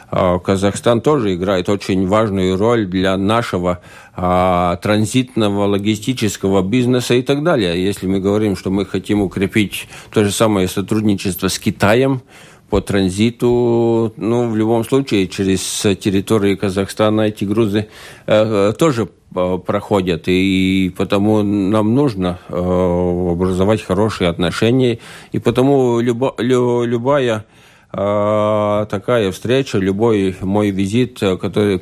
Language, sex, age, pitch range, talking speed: Russian, male, 50-69, 95-115 Hz, 120 wpm